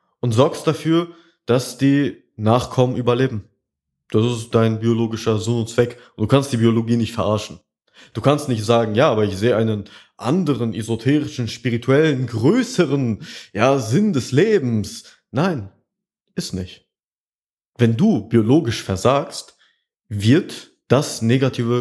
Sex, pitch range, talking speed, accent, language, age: male, 115-140 Hz, 130 wpm, German, German, 20-39